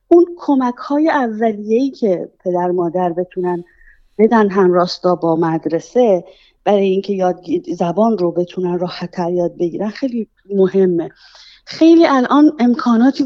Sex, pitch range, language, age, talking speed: female, 180-235 Hz, Persian, 30-49, 120 wpm